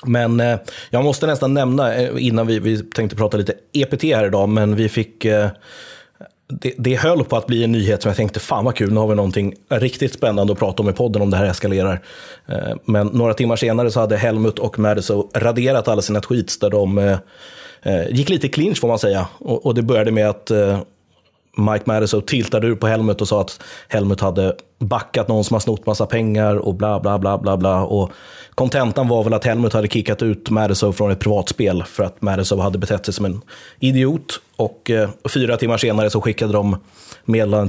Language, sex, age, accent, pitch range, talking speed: English, male, 30-49, Swedish, 105-125 Hz, 215 wpm